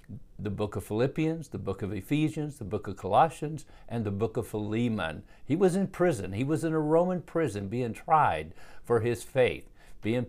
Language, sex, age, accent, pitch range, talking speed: English, male, 50-69, American, 110-145 Hz, 195 wpm